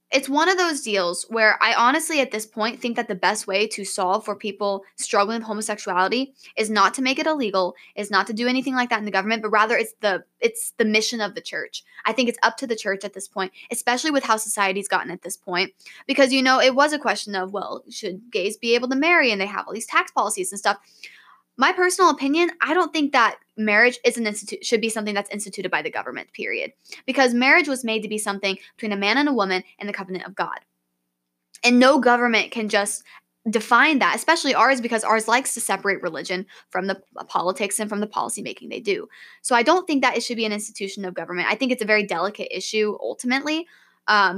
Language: English